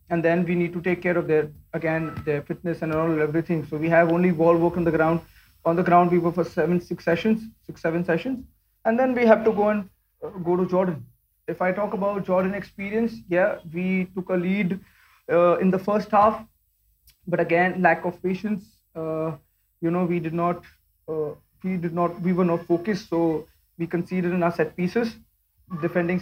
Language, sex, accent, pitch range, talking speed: English, male, Indian, 165-185 Hz, 205 wpm